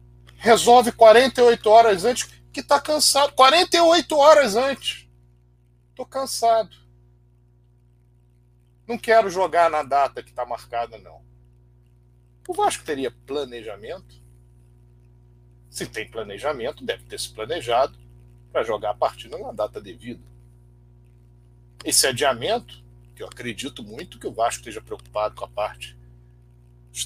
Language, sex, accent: Portuguese, male, Brazilian